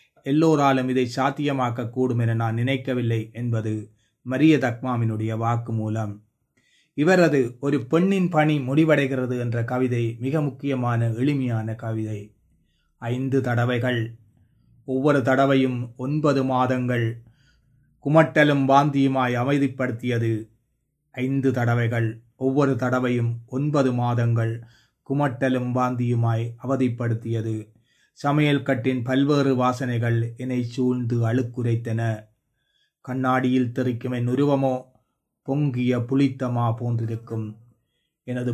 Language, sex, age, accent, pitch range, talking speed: Tamil, male, 30-49, native, 120-135 Hz, 85 wpm